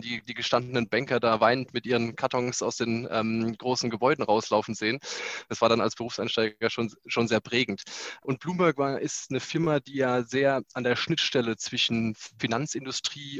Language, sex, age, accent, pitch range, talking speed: German, male, 20-39, German, 115-135 Hz, 170 wpm